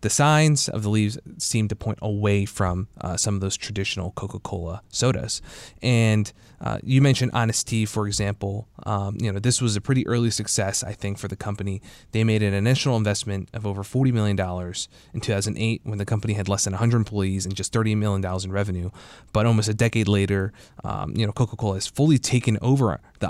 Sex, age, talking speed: male, 20-39, 205 wpm